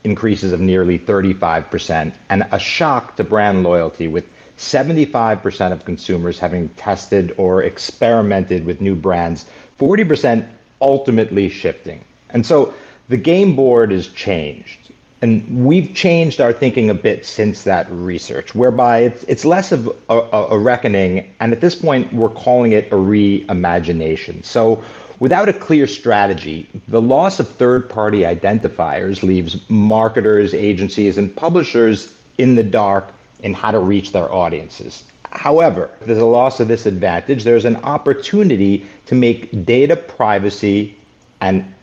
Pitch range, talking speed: 100-125 Hz, 140 wpm